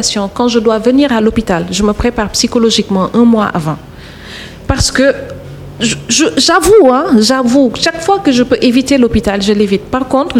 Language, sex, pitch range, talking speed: French, female, 205-255 Hz, 180 wpm